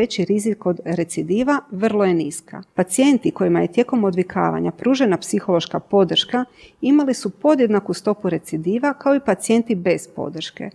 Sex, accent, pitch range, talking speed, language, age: female, native, 180-230 Hz, 140 wpm, Croatian, 40-59